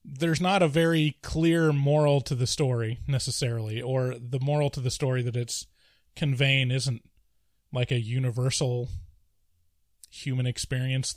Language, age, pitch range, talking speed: English, 20-39, 120-150 Hz, 135 wpm